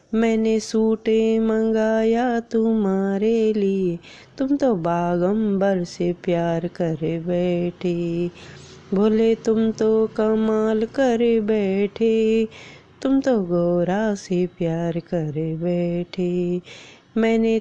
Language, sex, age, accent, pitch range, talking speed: Hindi, female, 20-39, native, 175-225 Hz, 90 wpm